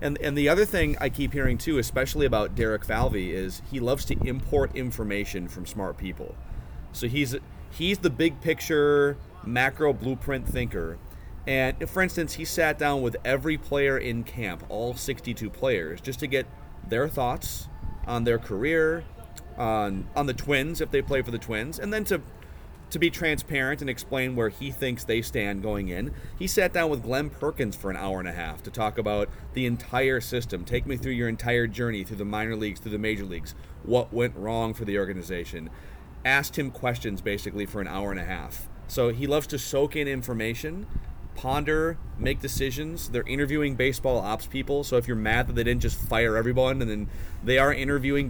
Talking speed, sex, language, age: 190 wpm, male, English, 30-49